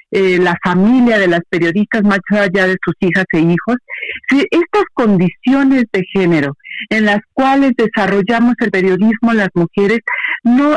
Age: 50-69